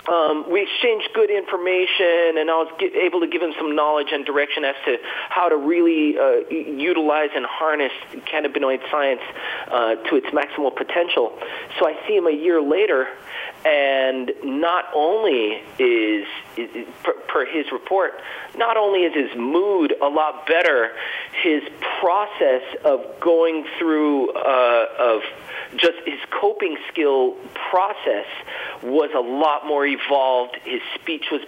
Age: 40-59